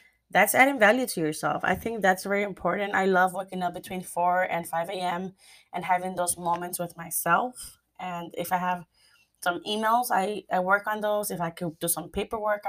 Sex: female